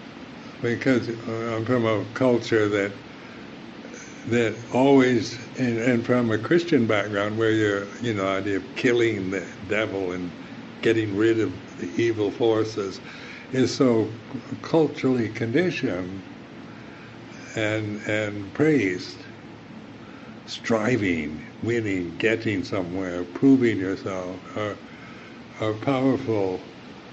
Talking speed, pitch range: 105 wpm, 105-125 Hz